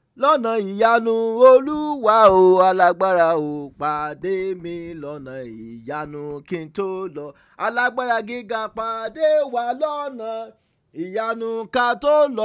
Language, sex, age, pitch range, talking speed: English, male, 30-49, 155-220 Hz, 85 wpm